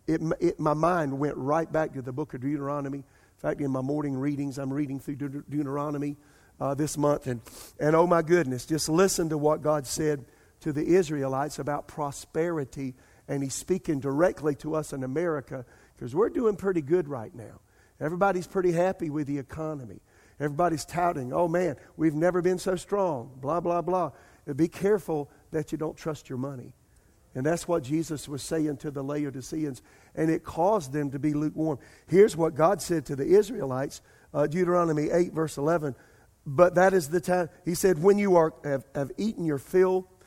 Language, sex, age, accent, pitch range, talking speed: English, male, 50-69, American, 140-175 Hz, 190 wpm